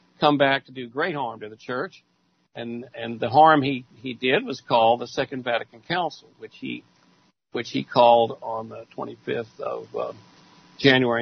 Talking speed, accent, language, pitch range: 175 wpm, American, English, 120-150 Hz